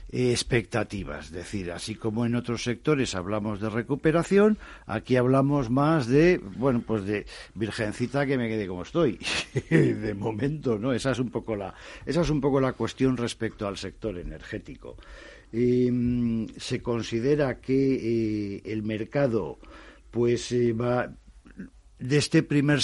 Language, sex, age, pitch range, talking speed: Spanish, male, 60-79, 105-130 Hz, 145 wpm